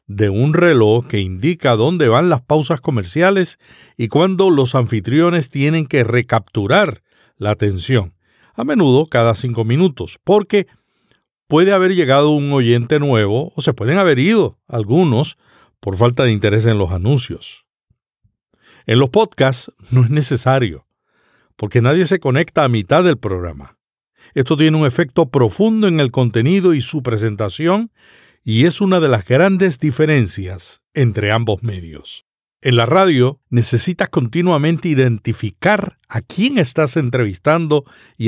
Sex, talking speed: male, 140 wpm